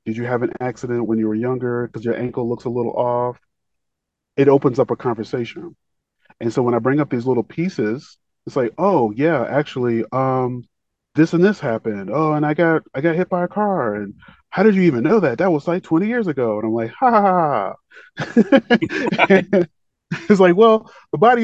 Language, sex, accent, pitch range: English, male, American, 120-160 Hz